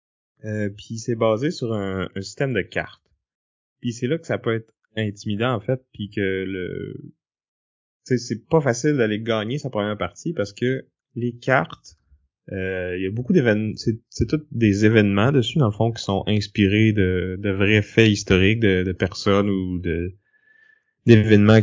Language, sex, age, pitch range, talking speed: French, male, 20-39, 95-115 Hz, 180 wpm